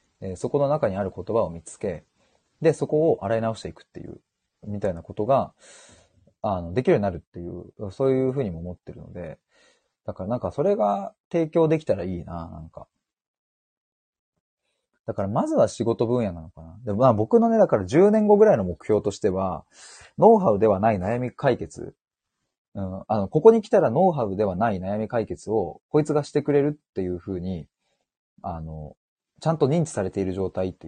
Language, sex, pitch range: Japanese, male, 90-145 Hz